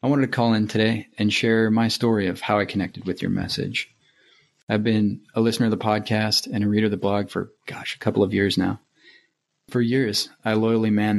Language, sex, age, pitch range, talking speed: English, male, 30-49, 95-110 Hz, 225 wpm